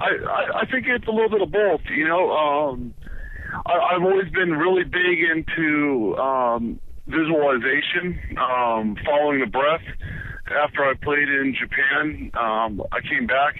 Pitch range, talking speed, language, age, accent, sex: 110-150 Hz, 150 wpm, English, 50-69, American, male